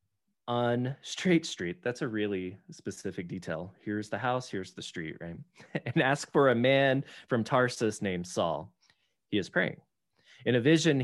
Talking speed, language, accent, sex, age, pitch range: 165 wpm, English, American, male, 20-39, 95-135 Hz